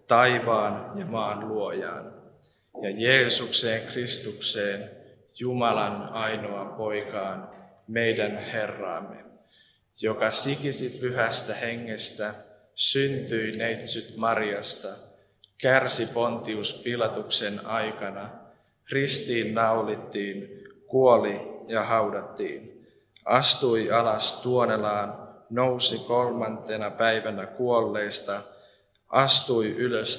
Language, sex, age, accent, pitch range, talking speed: Finnish, male, 20-39, native, 100-120 Hz, 70 wpm